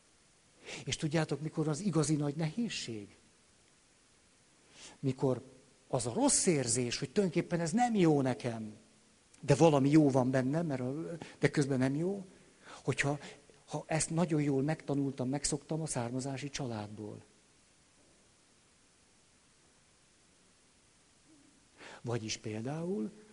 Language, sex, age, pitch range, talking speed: Hungarian, male, 60-79, 125-160 Hz, 105 wpm